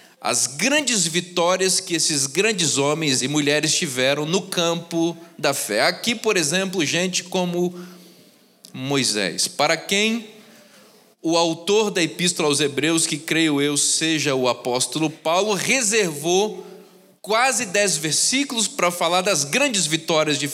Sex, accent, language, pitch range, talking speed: male, Brazilian, Portuguese, 155-210 Hz, 130 wpm